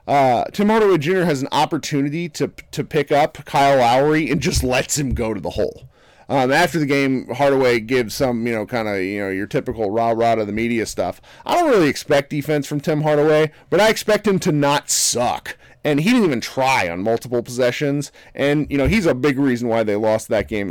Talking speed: 220 wpm